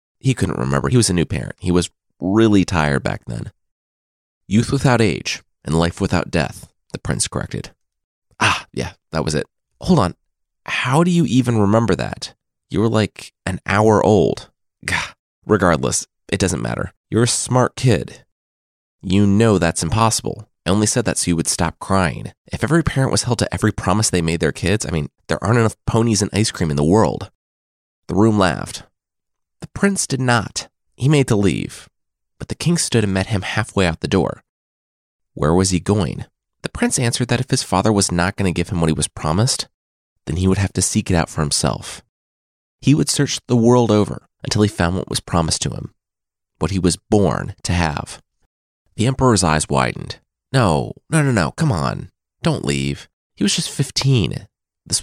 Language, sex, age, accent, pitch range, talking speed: English, male, 30-49, American, 80-120 Hz, 195 wpm